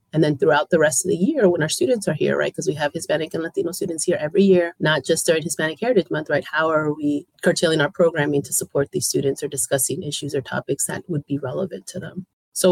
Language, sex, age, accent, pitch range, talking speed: English, female, 30-49, American, 145-175 Hz, 250 wpm